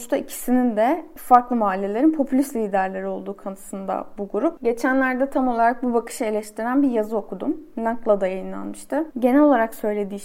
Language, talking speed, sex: Turkish, 150 wpm, female